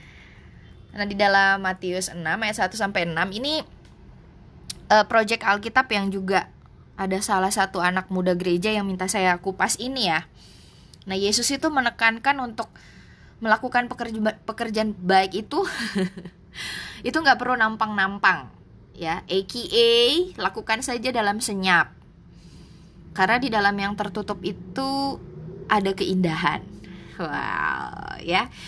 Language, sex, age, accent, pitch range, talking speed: Indonesian, female, 20-39, native, 185-245 Hz, 115 wpm